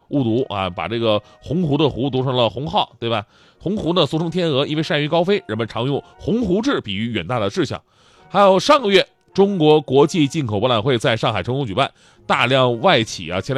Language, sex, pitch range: Chinese, male, 125-200 Hz